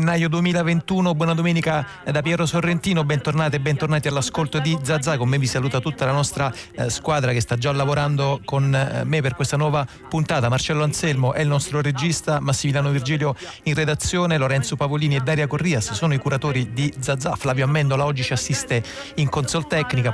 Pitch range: 120-150 Hz